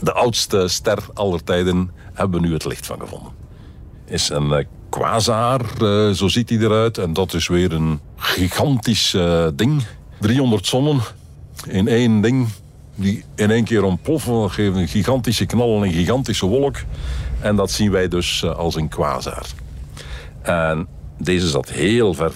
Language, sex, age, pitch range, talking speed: Dutch, male, 60-79, 80-105 Hz, 165 wpm